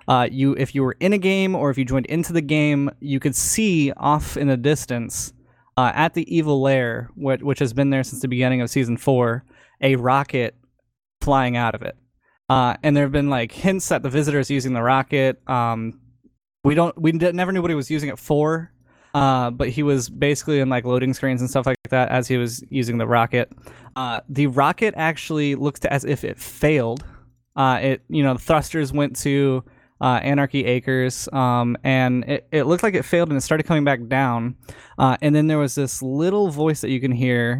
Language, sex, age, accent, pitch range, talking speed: English, male, 10-29, American, 125-145 Hz, 215 wpm